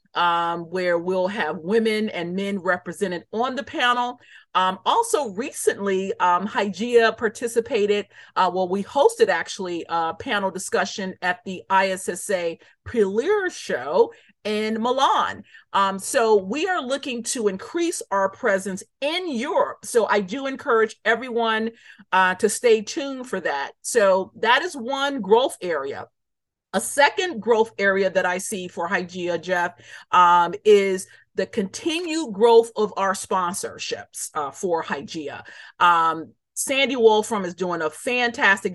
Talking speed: 135 wpm